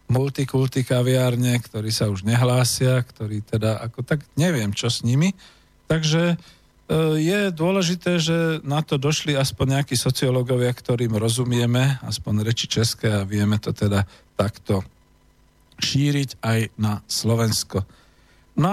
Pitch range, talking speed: 110-145 Hz, 125 wpm